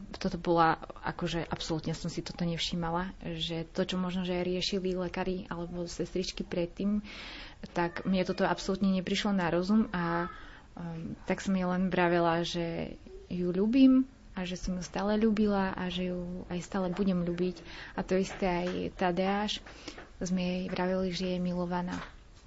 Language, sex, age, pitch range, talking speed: Slovak, female, 20-39, 175-195 Hz, 160 wpm